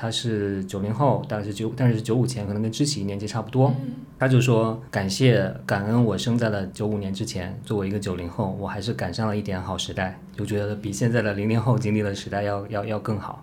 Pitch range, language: 100-125 Hz, Chinese